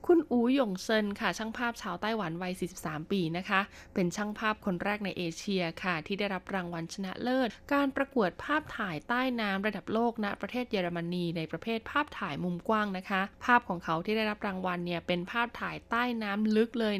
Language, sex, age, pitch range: Thai, female, 20-39, 180-225 Hz